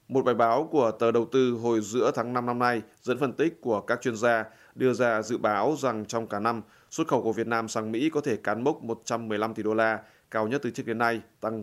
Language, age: Vietnamese, 20-39